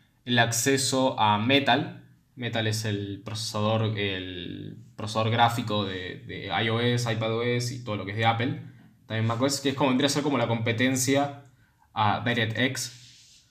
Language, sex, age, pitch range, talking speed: Spanish, male, 10-29, 110-140 Hz, 155 wpm